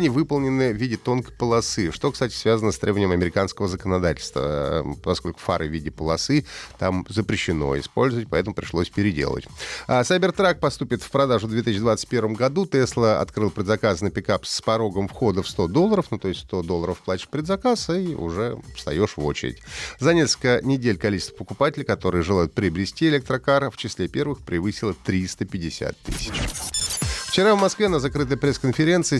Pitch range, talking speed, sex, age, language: 100-140 Hz, 150 wpm, male, 30-49, Russian